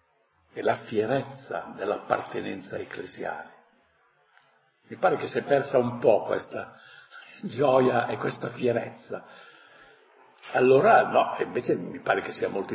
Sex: male